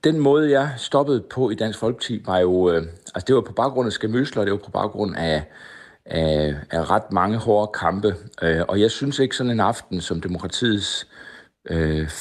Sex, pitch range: male, 85-105 Hz